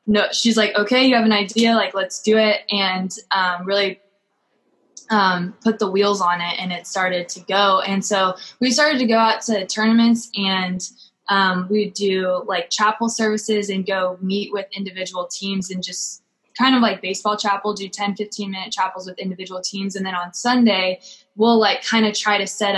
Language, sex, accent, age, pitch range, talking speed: English, female, American, 20-39, 185-215 Hz, 195 wpm